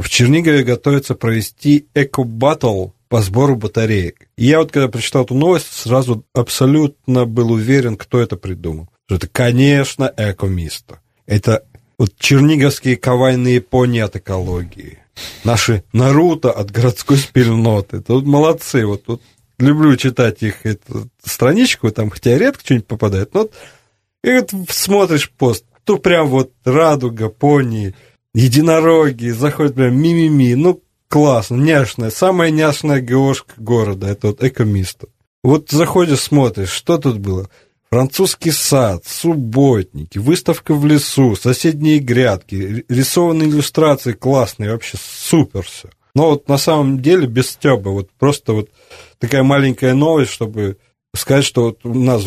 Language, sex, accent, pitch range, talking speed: Russian, male, native, 110-145 Hz, 135 wpm